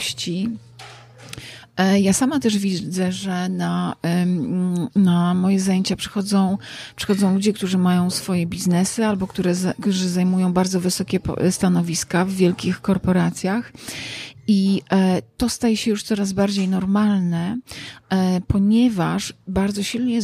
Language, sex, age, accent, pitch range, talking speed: Polish, female, 40-59, native, 180-200 Hz, 105 wpm